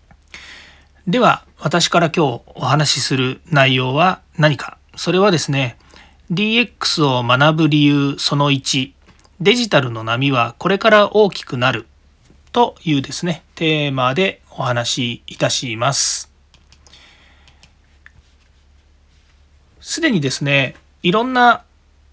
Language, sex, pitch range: Japanese, male, 110-170 Hz